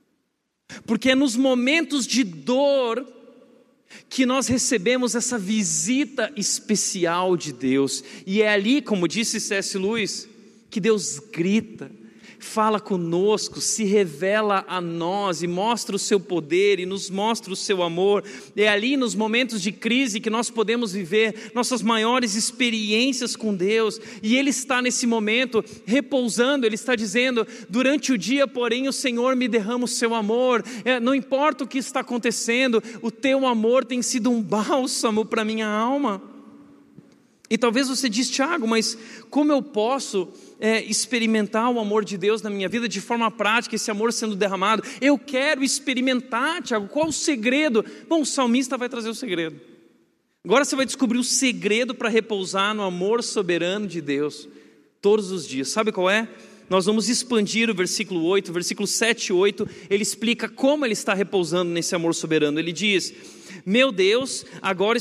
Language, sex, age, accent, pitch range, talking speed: Portuguese, male, 40-59, Brazilian, 205-250 Hz, 160 wpm